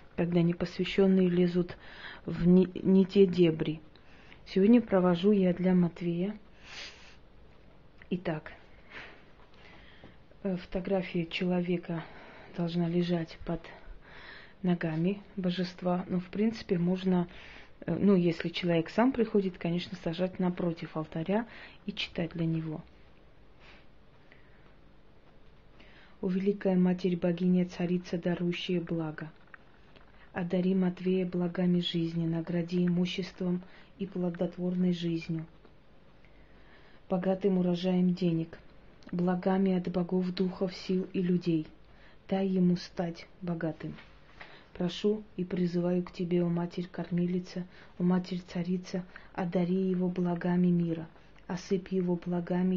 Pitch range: 175-185 Hz